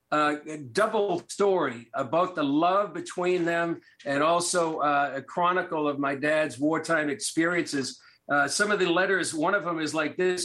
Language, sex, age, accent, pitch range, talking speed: English, male, 50-69, American, 150-185 Hz, 165 wpm